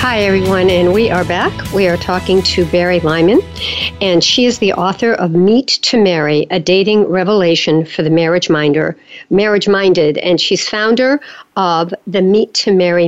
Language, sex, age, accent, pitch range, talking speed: English, female, 60-79, American, 175-225 Hz, 165 wpm